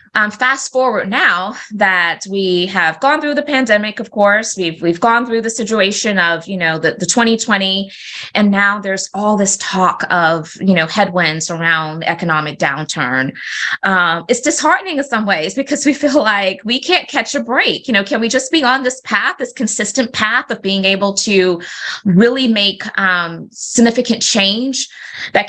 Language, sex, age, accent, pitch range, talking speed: English, female, 20-39, American, 175-225 Hz, 175 wpm